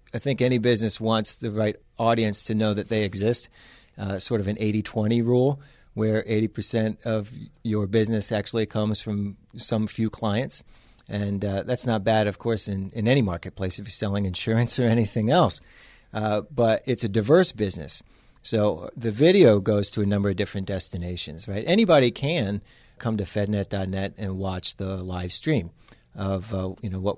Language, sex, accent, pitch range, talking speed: English, male, American, 100-115 Hz, 175 wpm